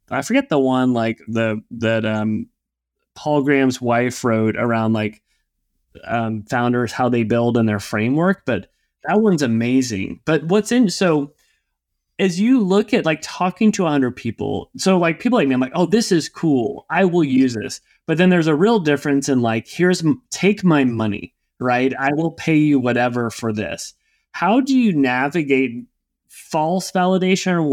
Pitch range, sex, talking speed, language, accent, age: 120-165 Hz, male, 175 wpm, English, American, 20-39